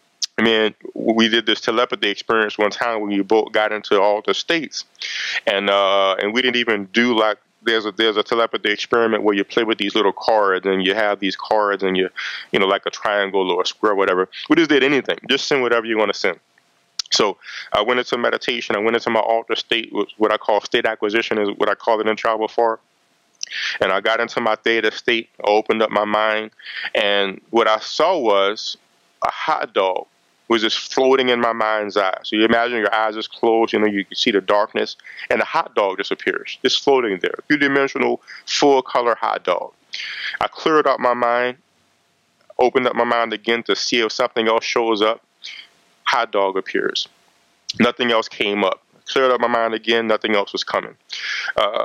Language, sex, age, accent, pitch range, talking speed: English, male, 20-39, American, 105-115 Hz, 210 wpm